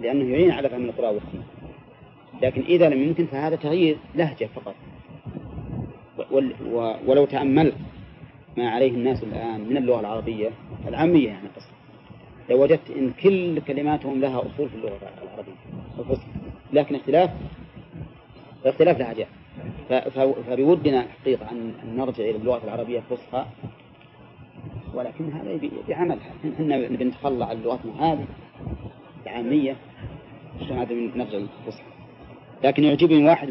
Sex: male